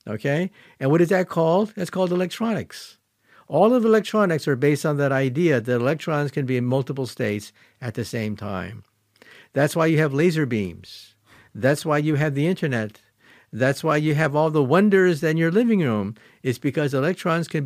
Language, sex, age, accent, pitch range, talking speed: English, male, 50-69, American, 125-180 Hz, 185 wpm